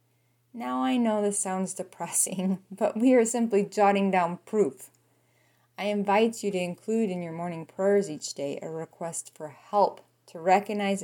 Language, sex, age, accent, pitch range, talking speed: English, female, 30-49, American, 140-215 Hz, 165 wpm